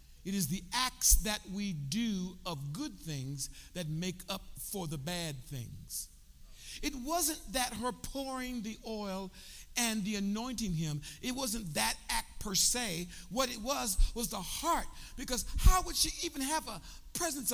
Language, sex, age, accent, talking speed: English, male, 60-79, American, 165 wpm